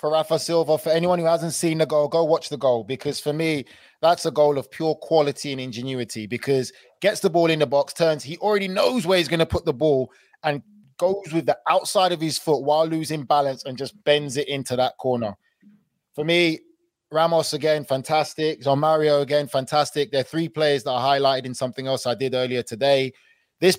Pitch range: 130-155 Hz